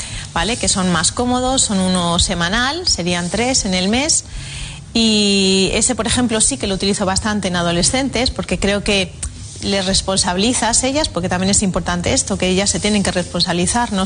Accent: Spanish